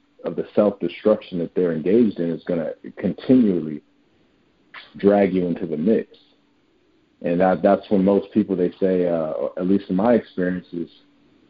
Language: English